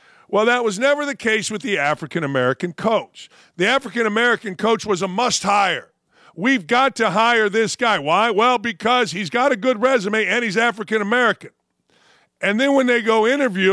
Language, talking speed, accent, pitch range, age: English, 170 wpm, American, 190-240 Hz, 50-69